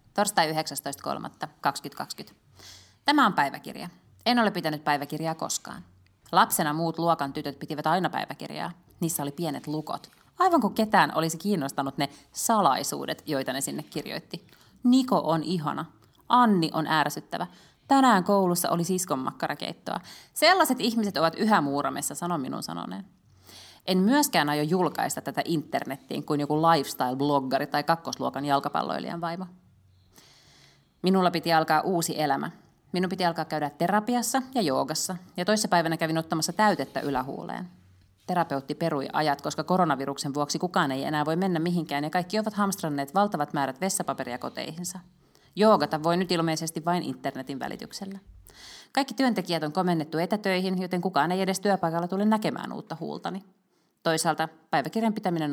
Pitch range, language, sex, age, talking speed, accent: 145-190 Hz, Finnish, female, 30-49, 135 wpm, native